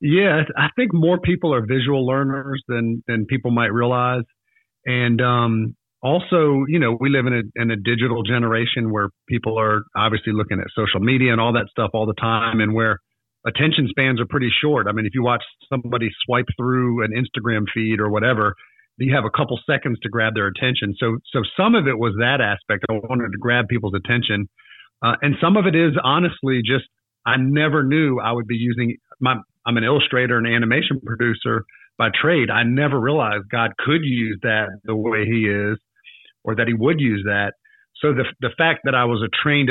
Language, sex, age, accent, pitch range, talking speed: English, male, 40-59, American, 110-130 Hz, 205 wpm